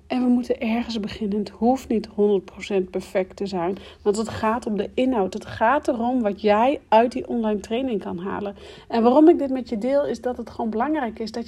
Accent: Dutch